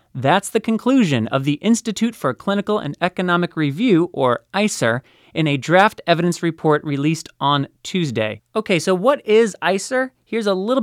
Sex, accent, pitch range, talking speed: male, American, 145-195 Hz, 160 wpm